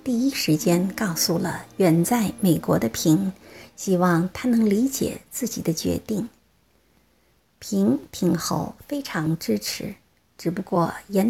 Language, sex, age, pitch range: Chinese, female, 50-69, 165-230 Hz